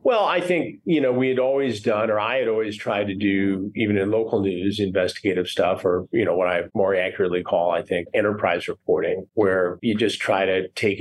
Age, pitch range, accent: 40-59, 95-130 Hz, American